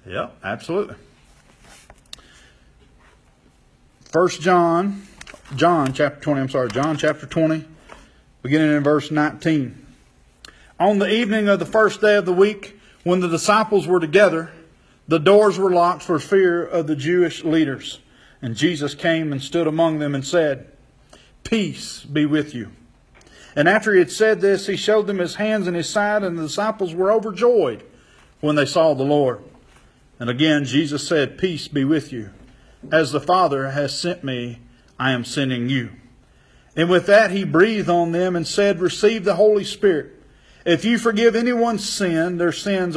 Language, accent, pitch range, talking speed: English, American, 145-200 Hz, 160 wpm